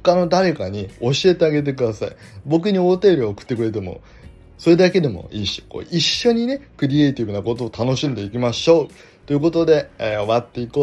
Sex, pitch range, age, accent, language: male, 120-190 Hz, 20-39, native, Japanese